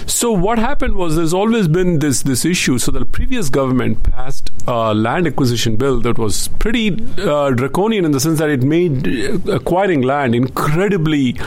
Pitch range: 120-160 Hz